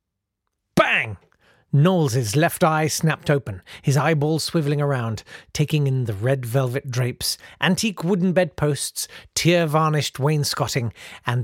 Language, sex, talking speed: English, male, 115 wpm